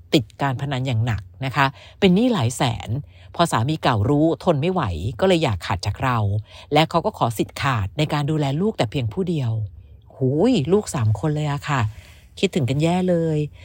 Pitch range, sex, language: 115-170 Hz, female, Thai